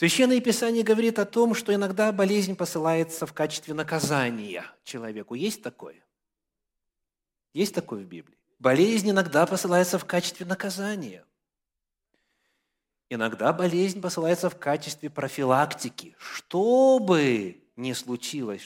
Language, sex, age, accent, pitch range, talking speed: Russian, male, 30-49, native, 125-205 Hz, 110 wpm